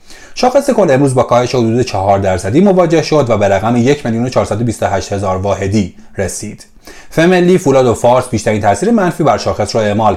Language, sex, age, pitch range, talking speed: Persian, male, 30-49, 100-145 Hz, 185 wpm